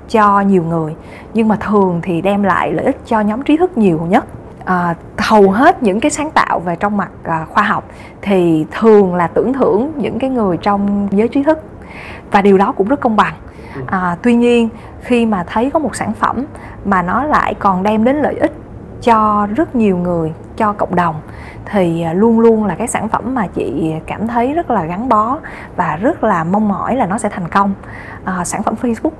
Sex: female